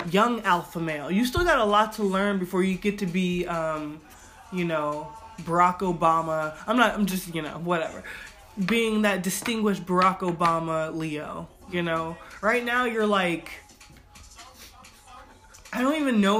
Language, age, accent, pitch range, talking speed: English, 20-39, American, 175-210 Hz, 155 wpm